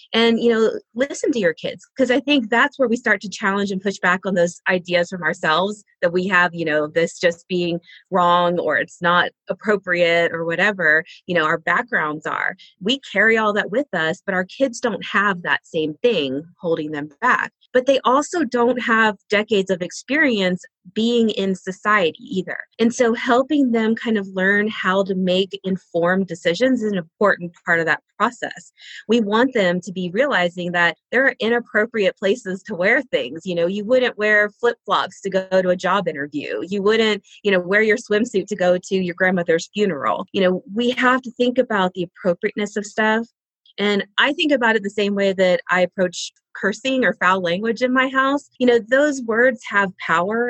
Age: 30-49